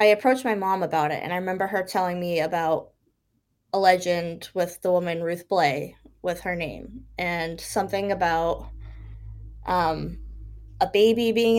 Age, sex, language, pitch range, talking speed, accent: 10-29, female, English, 170-220 Hz, 155 wpm, American